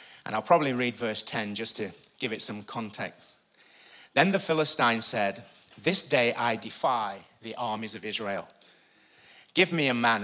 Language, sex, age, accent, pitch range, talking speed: English, male, 30-49, British, 115-155 Hz, 165 wpm